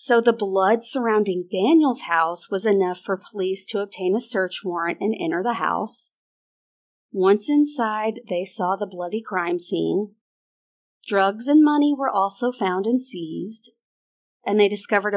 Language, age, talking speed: English, 40-59, 150 wpm